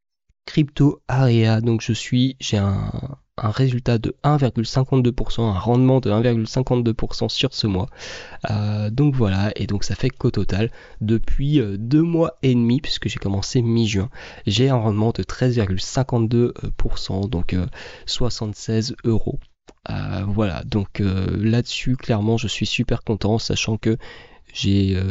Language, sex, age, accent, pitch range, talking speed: French, male, 20-39, French, 100-125 Hz, 135 wpm